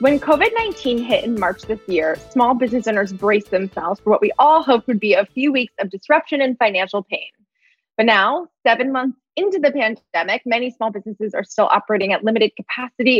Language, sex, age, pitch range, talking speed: English, female, 20-39, 210-260 Hz, 195 wpm